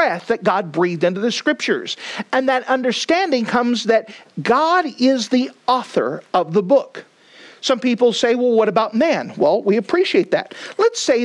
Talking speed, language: 165 wpm, English